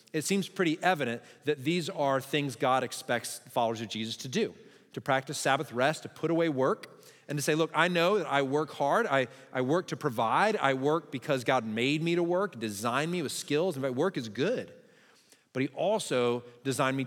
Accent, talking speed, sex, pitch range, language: American, 210 wpm, male, 120-155 Hz, English